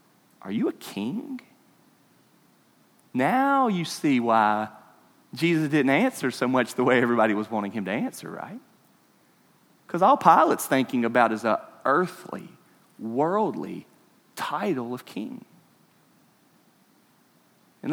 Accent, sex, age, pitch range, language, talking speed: American, male, 40-59, 110-140 Hz, English, 115 wpm